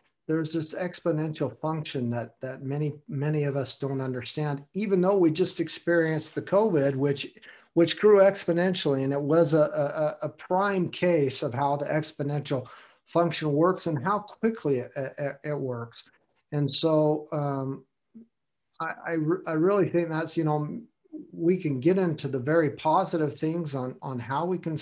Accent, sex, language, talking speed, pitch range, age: American, male, English, 165 wpm, 135-165 Hz, 50-69